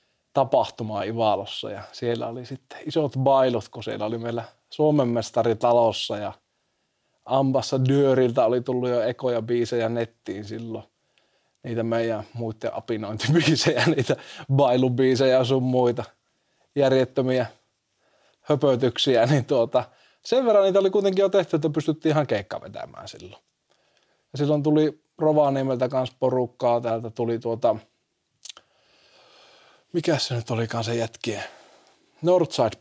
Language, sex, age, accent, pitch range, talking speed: Finnish, male, 20-39, native, 115-140 Hz, 120 wpm